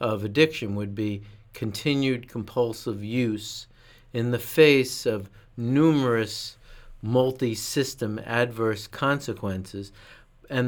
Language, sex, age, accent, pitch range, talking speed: English, male, 50-69, American, 115-135 Hz, 90 wpm